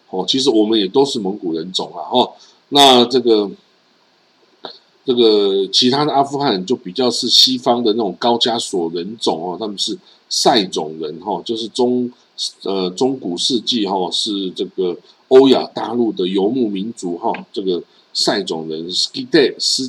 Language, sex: Chinese, male